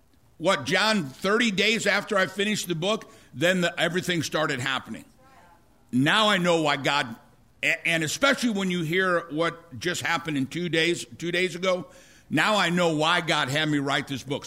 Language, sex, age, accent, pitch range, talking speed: English, male, 60-79, American, 145-210 Hz, 175 wpm